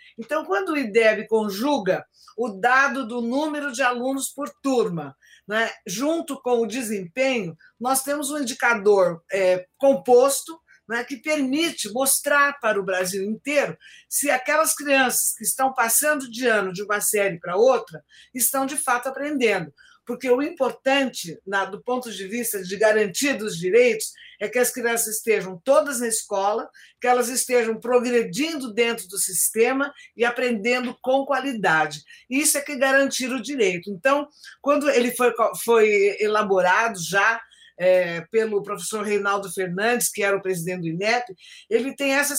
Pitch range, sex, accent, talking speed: 210-270 Hz, female, Brazilian, 145 wpm